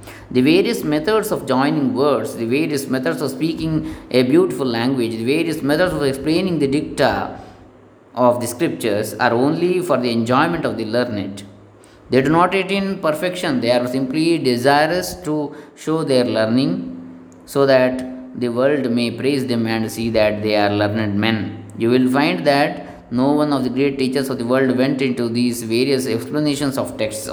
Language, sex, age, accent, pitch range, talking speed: English, male, 20-39, Indian, 110-140 Hz, 175 wpm